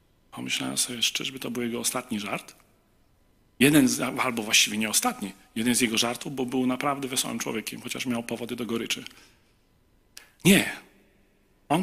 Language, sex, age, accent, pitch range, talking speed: Polish, male, 40-59, native, 120-155 Hz, 150 wpm